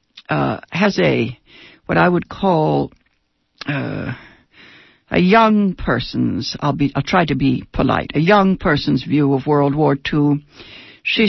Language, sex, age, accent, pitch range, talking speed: English, female, 60-79, American, 150-215 Hz, 145 wpm